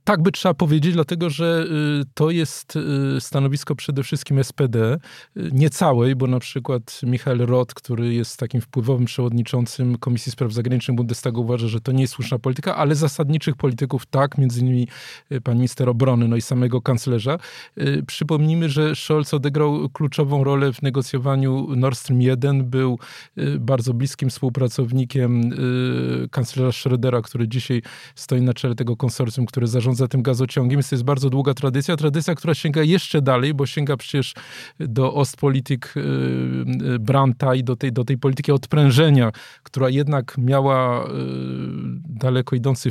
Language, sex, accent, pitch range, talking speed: Polish, male, native, 125-140 Hz, 150 wpm